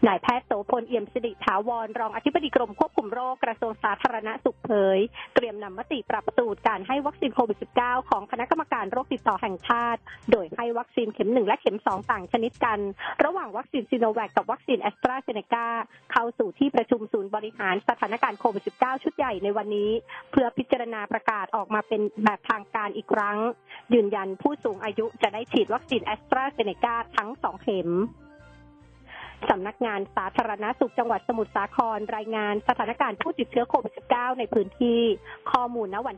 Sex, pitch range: female, 210-250 Hz